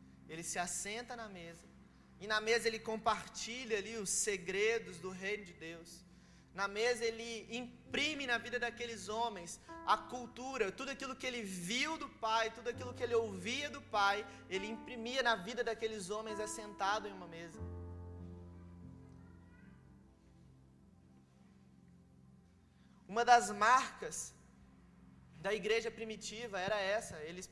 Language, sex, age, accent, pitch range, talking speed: Gujarati, male, 20-39, Brazilian, 165-225 Hz, 130 wpm